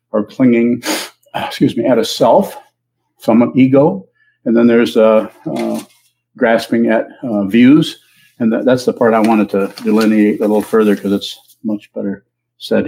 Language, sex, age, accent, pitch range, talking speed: English, male, 50-69, American, 100-115 Hz, 165 wpm